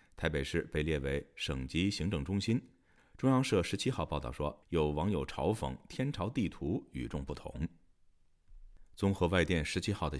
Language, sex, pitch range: Chinese, male, 75-100 Hz